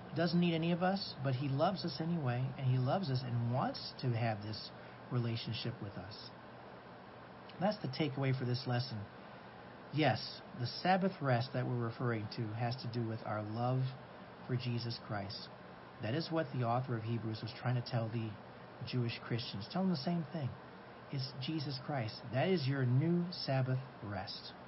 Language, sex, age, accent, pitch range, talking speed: English, male, 50-69, American, 115-140 Hz, 175 wpm